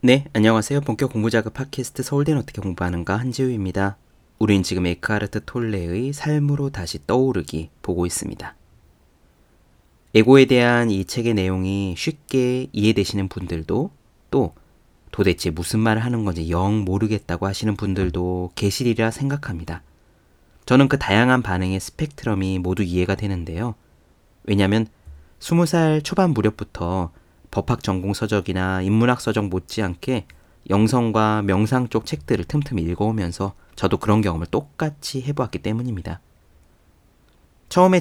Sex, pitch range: male, 90-125 Hz